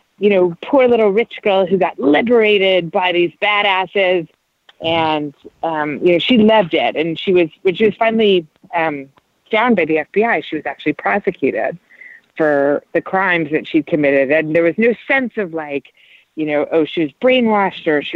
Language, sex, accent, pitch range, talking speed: English, female, American, 155-200 Hz, 185 wpm